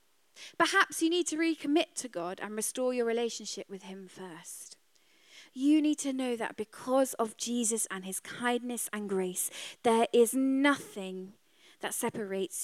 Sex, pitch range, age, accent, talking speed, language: female, 210-320 Hz, 20-39, British, 150 wpm, English